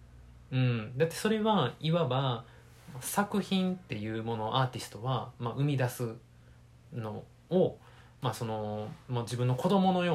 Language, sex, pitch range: Japanese, male, 120-165 Hz